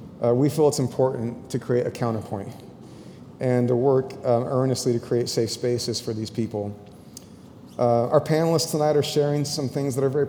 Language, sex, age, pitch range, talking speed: English, male, 30-49, 120-140 Hz, 185 wpm